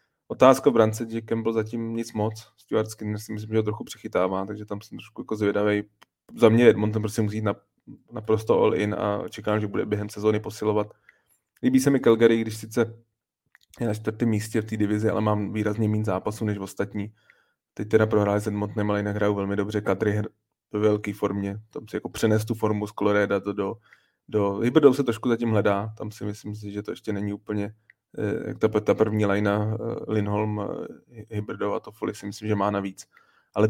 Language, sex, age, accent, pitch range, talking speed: Czech, male, 20-39, native, 105-110 Hz, 200 wpm